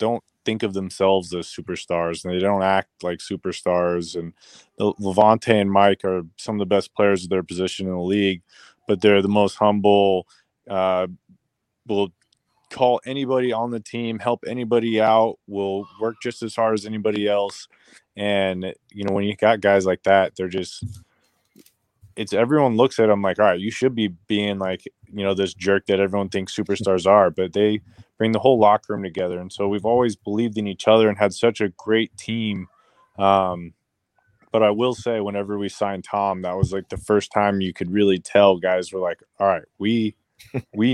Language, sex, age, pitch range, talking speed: English, male, 20-39, 95-110 Hz, 195 wpm